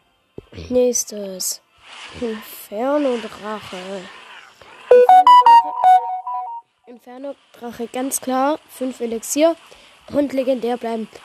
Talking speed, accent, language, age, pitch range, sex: 55 wpm, German, German, 10-29, 225-275 Hz, female